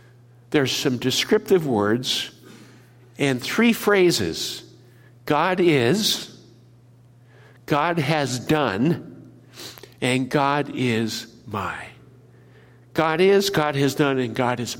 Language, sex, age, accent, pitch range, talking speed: English, male, 60-79, American, 120-165 Hz, 95 wpm